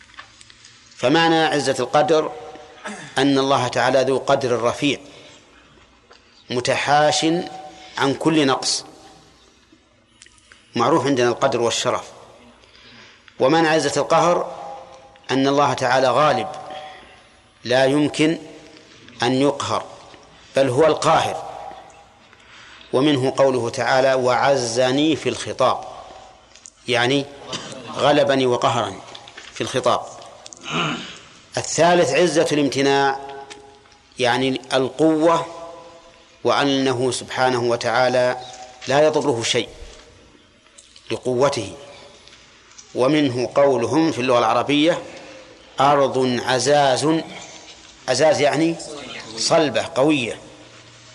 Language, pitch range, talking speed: Arabic, 125-155 Hz, 75 wpm